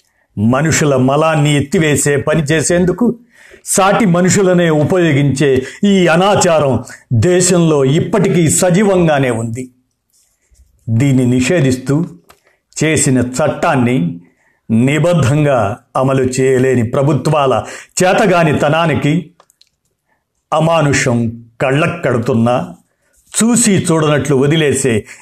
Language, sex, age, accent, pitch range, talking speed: Telugu, male, 50-69, native, 130-175 Hz, 65 wpm